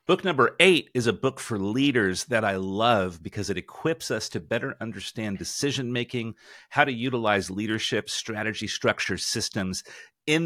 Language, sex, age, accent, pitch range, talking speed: English, male, 40-59, American, 100-125 Hz, 155 wpm